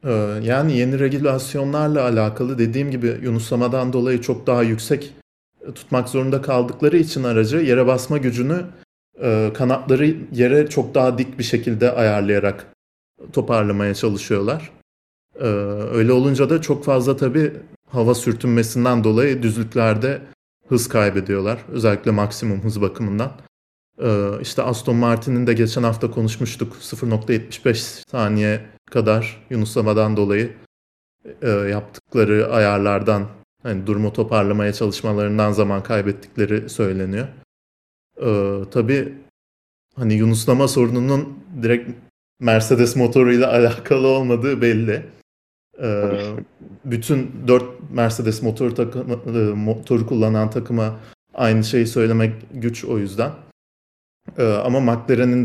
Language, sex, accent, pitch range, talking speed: Turkish, male, native, 105-125 Hz, 105 wpm